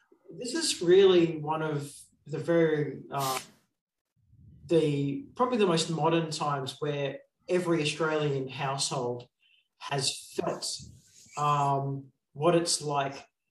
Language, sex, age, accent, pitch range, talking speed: English, male, 40-59, Australian, 135-170 Hz, 105 wpm